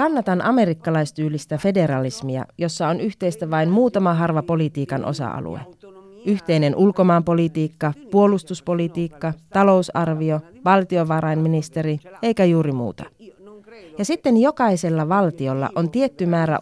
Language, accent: Finnish, native